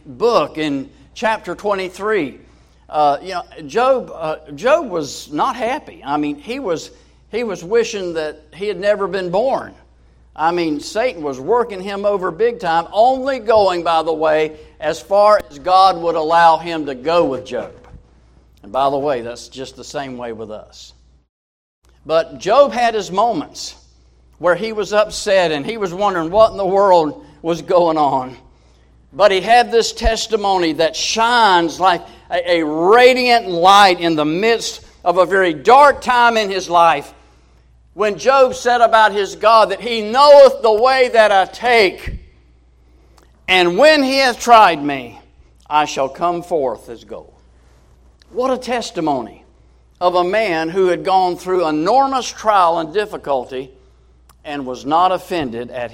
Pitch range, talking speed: 130-210 Hz, 160 wpm